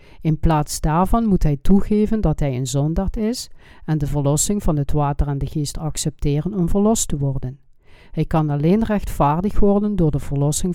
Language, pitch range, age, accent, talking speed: Dutch, 145-180 Hz, 50-69, Dutch, 185 wpm